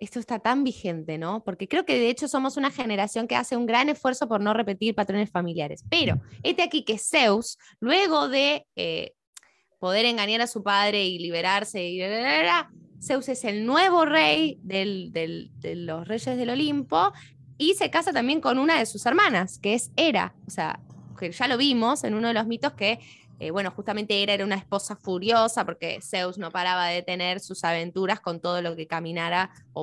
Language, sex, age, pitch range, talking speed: Spanish, female, 10-29, 180-260 Hz, 205 wpm